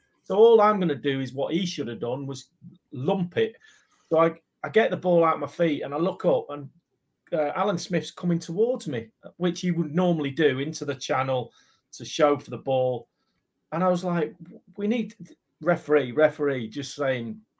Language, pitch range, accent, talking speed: English, 130-175 Hz, British, 205 wpm